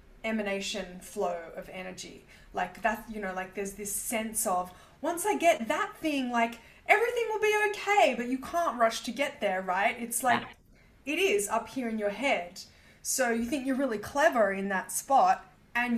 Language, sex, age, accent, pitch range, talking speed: English, female, 20-39, Australian, 195-240 Hz, 190 wpm